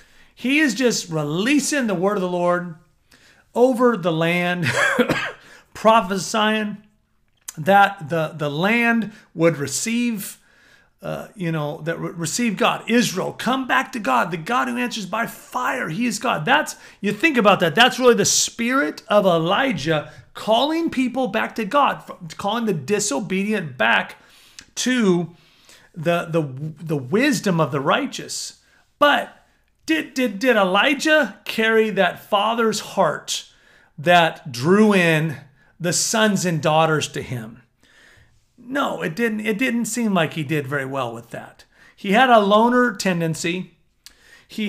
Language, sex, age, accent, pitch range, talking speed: English, male, 40-59, American, 165-235 Hz, 140 wpm